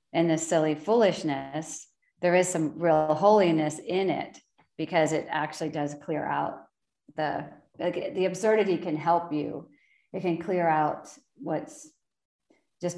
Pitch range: 150-175 Hz